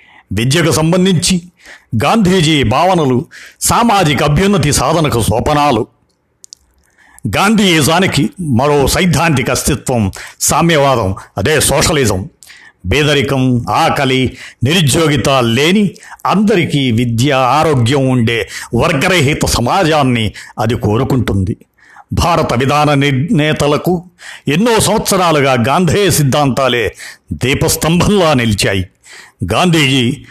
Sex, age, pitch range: male, 50-69, 110-160 Hz